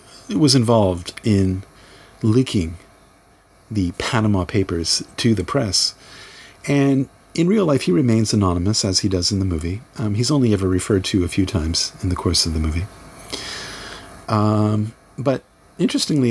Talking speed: 150 wpm